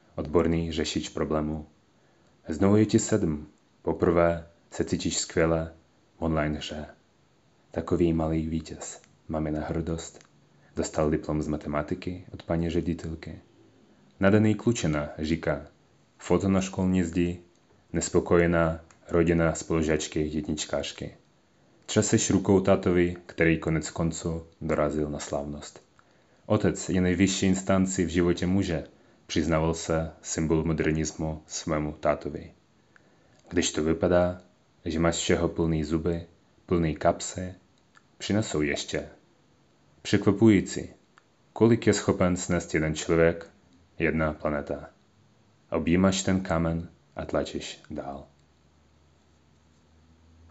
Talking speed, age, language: 105 wpm, 30-49, Czech